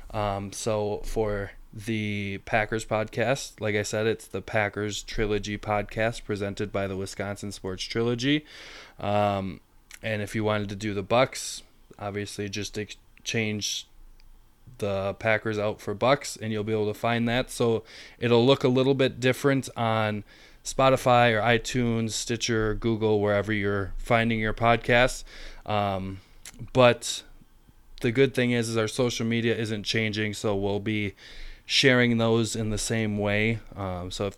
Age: 20-39